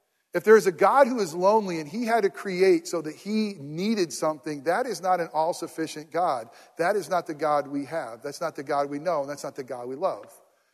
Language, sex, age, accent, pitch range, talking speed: English, male, 40-59, American, 170-240 Hz, 245 wpm